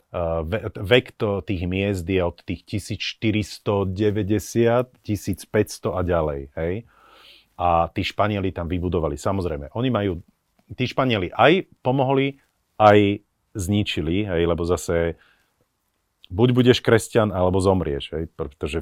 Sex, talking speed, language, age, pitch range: male, 110 wpm, Slovak, 40-59, 85-110 Hz